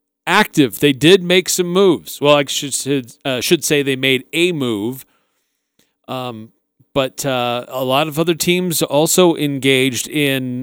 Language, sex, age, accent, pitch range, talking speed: English, male, 40-59, American, 130-165 Hz, 150 wpm